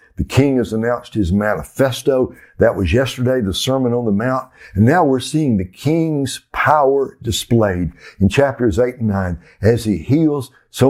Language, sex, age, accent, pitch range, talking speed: English, male, 60-79, American, 100-135 Hz, 170 wpm